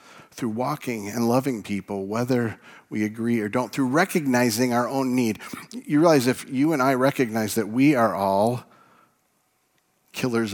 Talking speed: 155 wpm